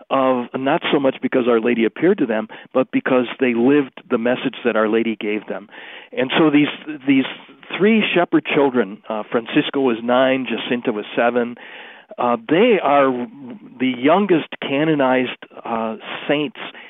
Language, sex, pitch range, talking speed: English, male, 120-145 Hz, 155 wpm